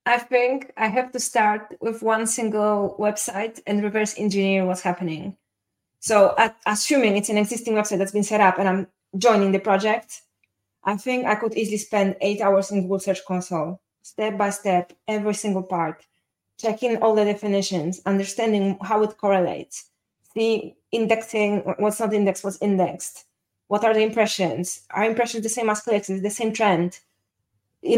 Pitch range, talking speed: 190-225 Hz, 165 wpm